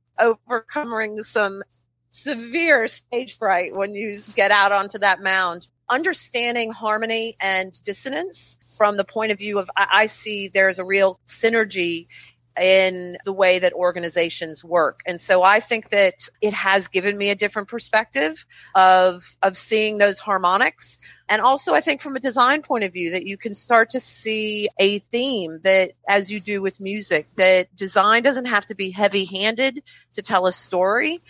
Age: 40-59